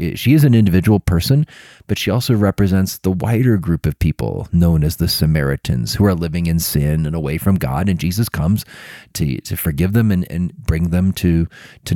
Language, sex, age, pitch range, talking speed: English, male, 30-49, 90-115 Hz, 200 wpm